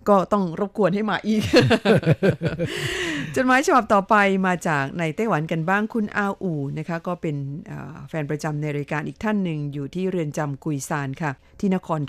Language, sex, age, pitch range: Thai, female, 50-69, 150-190 Hz